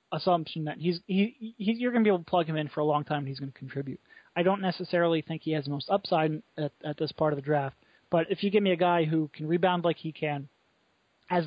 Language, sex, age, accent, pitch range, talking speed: English, male, 20-39, American, 150-180 Hz, 275 wpm